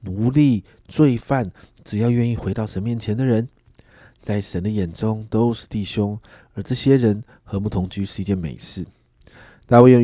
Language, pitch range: Chinese, 95-125 Hz